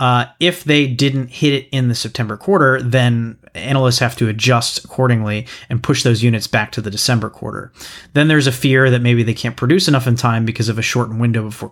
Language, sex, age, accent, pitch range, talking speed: English, male, 30-49, American, 110-125 Hz, 220 wpm